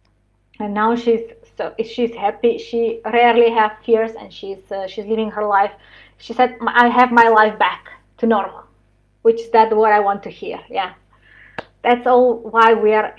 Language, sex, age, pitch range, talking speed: English, female, 20-39, 220-250 Hz, 180 wpm